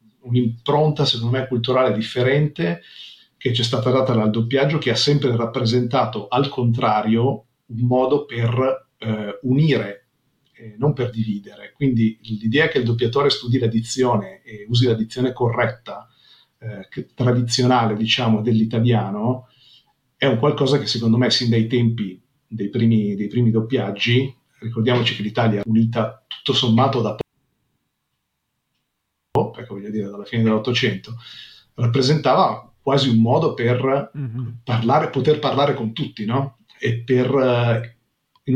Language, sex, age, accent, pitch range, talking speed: Italian, male, 40-59, native, 115-130 Hz, 130 wpm